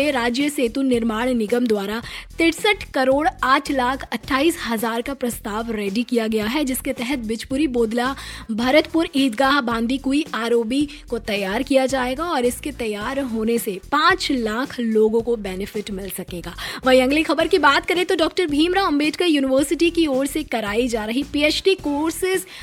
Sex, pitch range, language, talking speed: female, 245-310 Hz, Hindi, 80 wpm